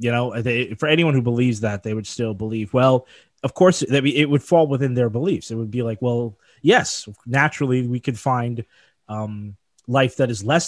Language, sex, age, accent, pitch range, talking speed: English, male, 20-39, American, 105-125 Hz, 210 wpm